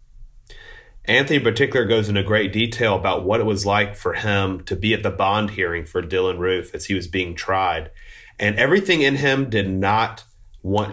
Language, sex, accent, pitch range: English, male, American, 95-115 Hz